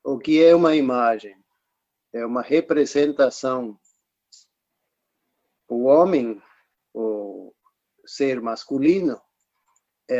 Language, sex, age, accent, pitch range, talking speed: Portuguese, male, 50-69, Brazilian, 125-165 Hz, 80 wpm